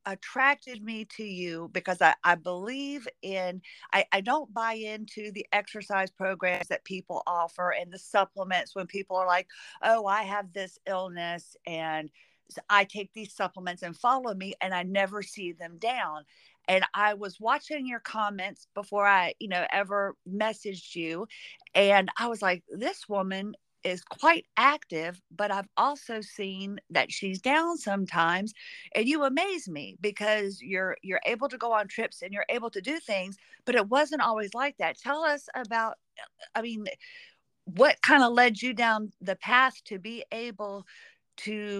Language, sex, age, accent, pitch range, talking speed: English, female, 50-69, American, 185-235 Hz, 170 wpm